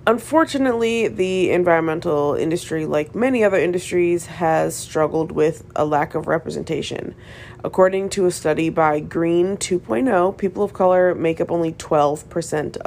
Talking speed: 135 wpm